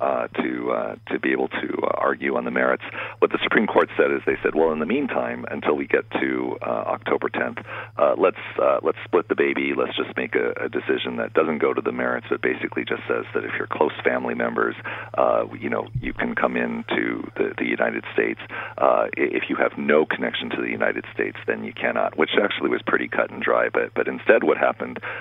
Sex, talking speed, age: male, 225 wpm, 50-69